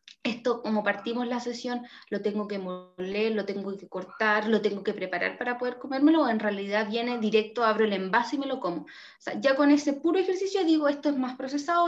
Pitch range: 205-280 Hz